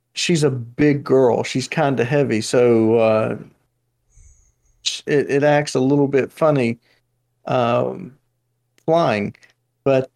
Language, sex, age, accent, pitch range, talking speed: English, male, 40-59, American, 120-150 Hz, 120 wpm